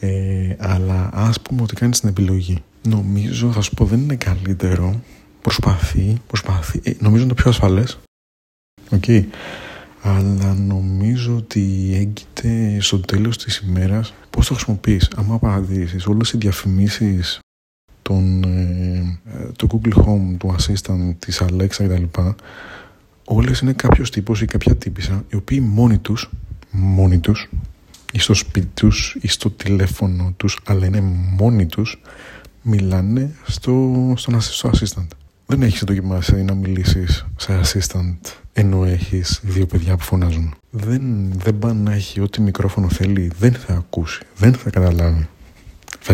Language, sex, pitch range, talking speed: Greek, male, 95-110 Hz, 140 wpm